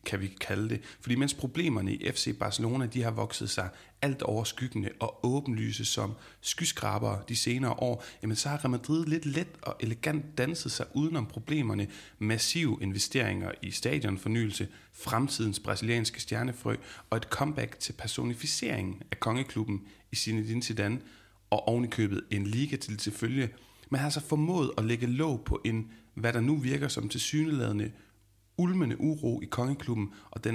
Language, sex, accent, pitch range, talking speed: Danish, male, native, 105-135 Hz, 155 wpm